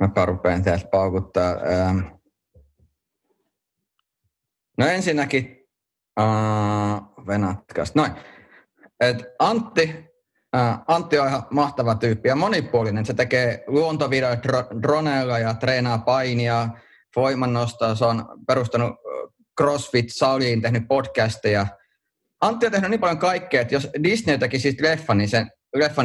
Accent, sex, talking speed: native, male, 105 wpm